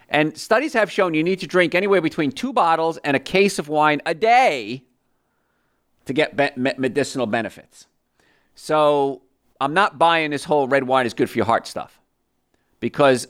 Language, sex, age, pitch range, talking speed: English, male, 50-69, 125-155 Hz, 170 wpm